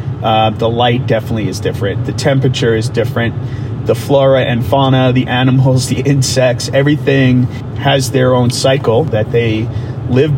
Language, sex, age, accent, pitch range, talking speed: English, male, 40-59, American, 110-130 Hz, 150 wpm